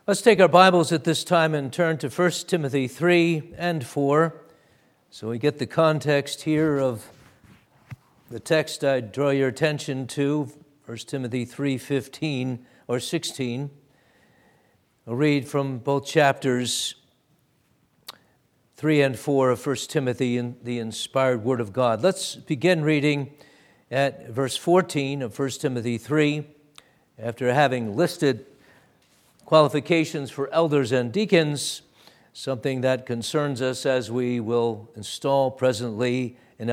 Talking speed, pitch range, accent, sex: 130 wpm, 130-160 Hz, American, male